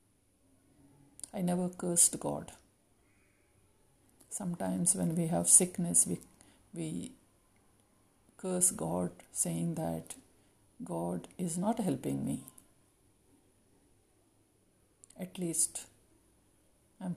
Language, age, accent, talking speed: English, 60-79, Indian, 80 wpm